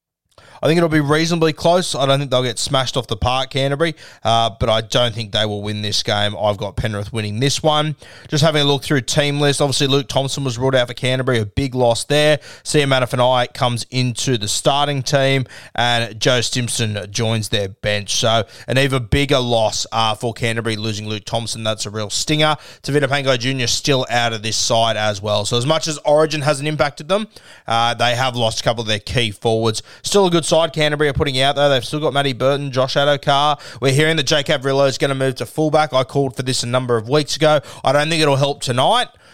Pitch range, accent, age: 115-145 Hz, Australian, 20-39